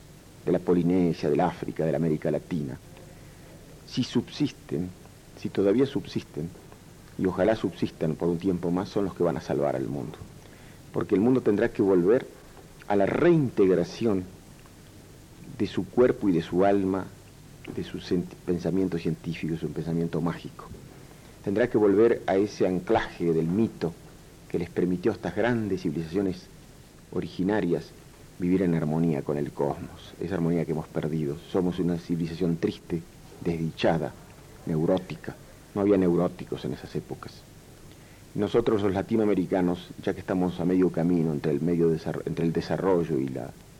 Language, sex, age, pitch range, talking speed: Spanish, male, 50-69, 85-100 Hz, 150 wpm